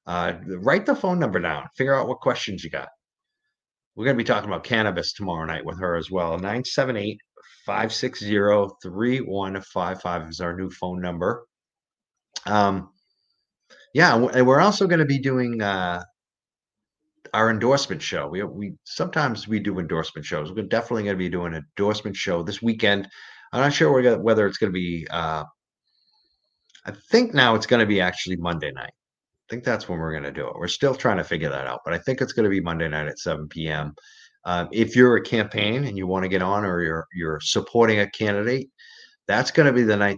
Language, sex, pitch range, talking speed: English, male, 90-115 Hz, 195 wpm